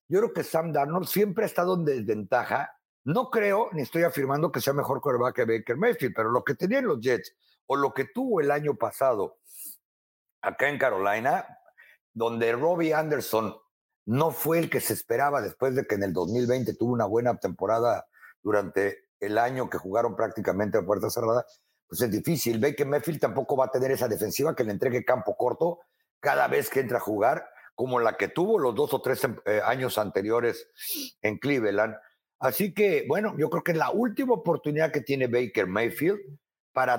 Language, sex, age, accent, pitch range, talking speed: Spanish, male, 50-69, Mexican, 135-210 Hz, 185 wpm